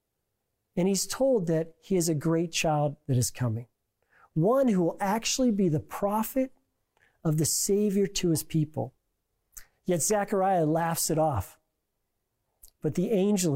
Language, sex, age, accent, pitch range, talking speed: English, male, 40-59, American, 135-200 Hz, 145 wpm